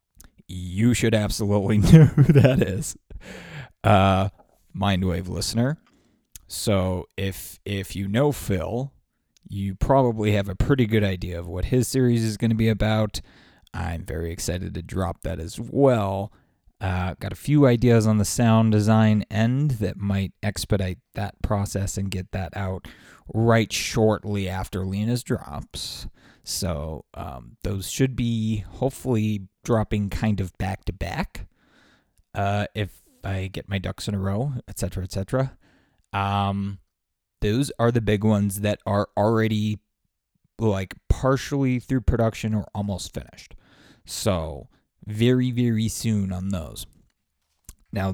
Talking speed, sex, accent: 140 wpm, male, American